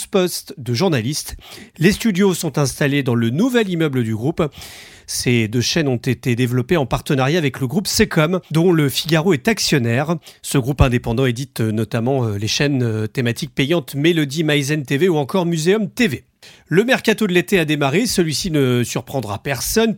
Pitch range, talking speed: 125-170 Hz, 170 wpm